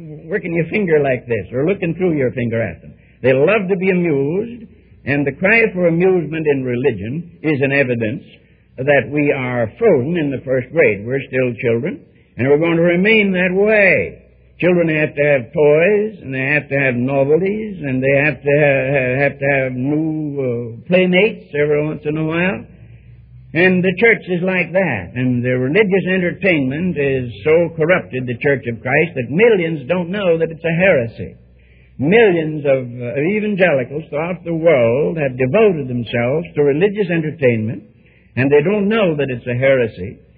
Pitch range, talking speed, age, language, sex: 130-185 Hz, 170 wpm, 60-79, English, male